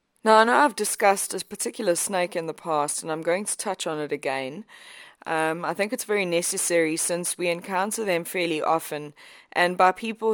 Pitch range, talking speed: 160-195 Hz, 195 wpm